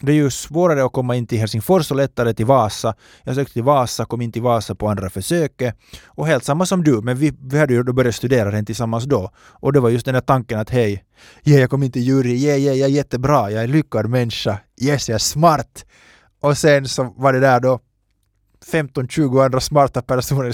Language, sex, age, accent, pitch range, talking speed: Finnish, male, 20-39, native, 115-145 Hz, 240 wpm